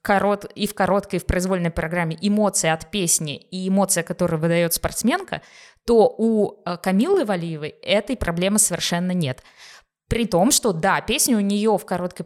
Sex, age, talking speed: female, 20-39, 165 wpm